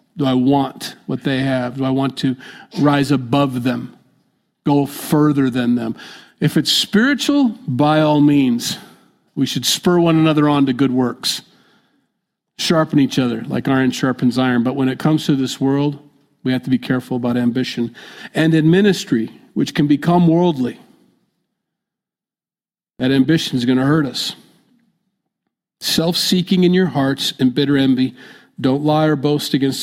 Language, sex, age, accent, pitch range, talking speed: English, male, 50-69, American, 130-165 Hz, 160 wpm